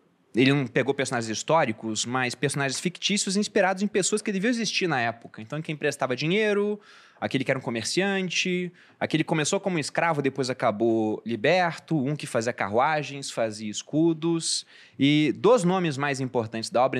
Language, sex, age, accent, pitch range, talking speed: Portuguese, male, 20-39, Brazilian, 130-165 Hz, 160 wpm